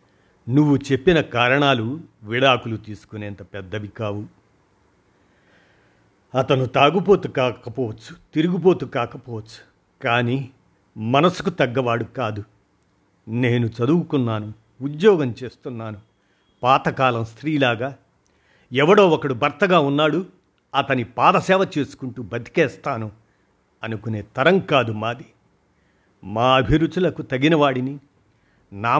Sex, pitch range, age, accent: male, 110-145 Hz, 50-69, native